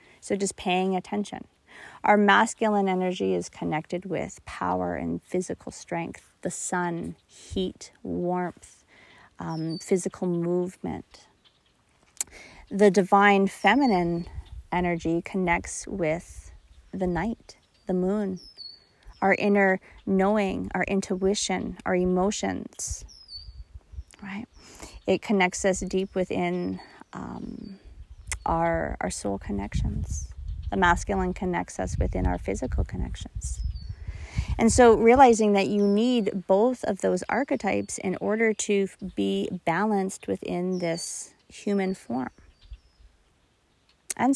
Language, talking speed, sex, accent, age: English, 105 wpm, female, American, 30-49